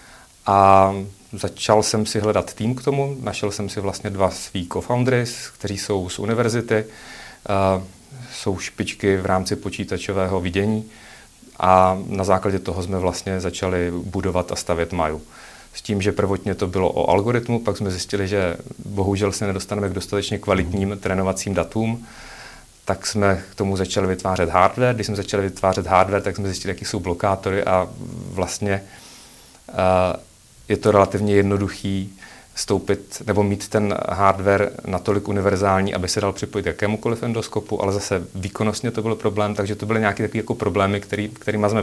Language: Czech